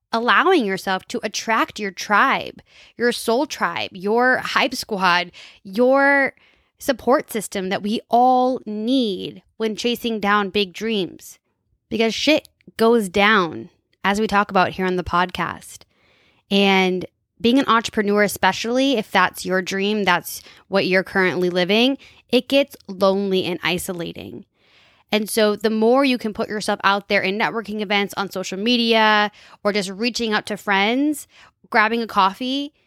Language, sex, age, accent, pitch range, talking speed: English, female, 20-39, American, 190-235 Hz, 145 wpm